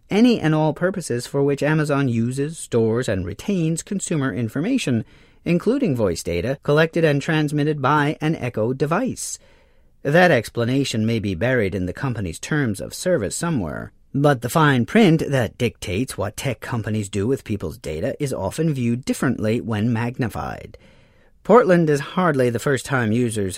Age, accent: 40-59, American